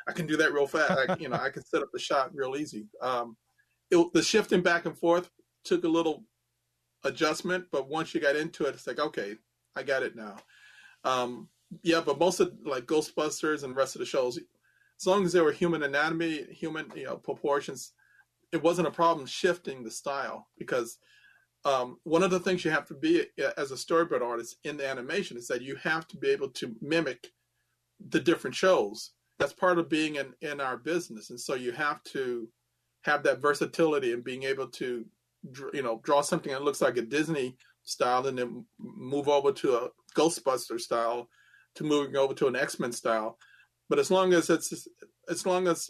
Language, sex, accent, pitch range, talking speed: English, male, American, 135-185 Hz, 200 wpm